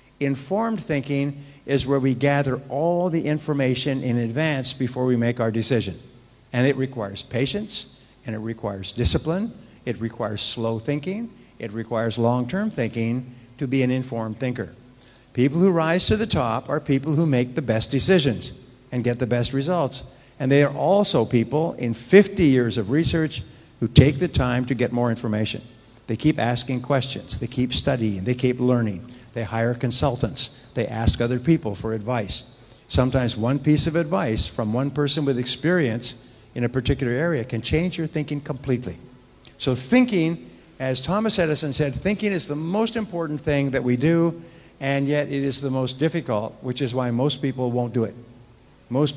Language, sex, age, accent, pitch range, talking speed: English, male, 50-69, American, 120-150 Hz, 175 wpm